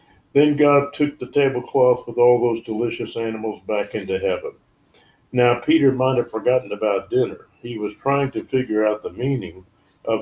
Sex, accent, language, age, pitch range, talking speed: male, American, English, 60-79, 110-135 Hz, 170 wpm